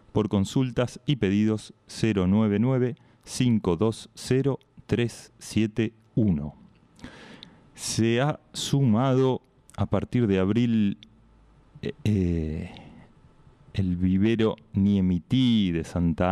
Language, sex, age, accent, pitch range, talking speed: Spanish, male, 30-49, Argentinian, 100-125 Hz, 65 wpm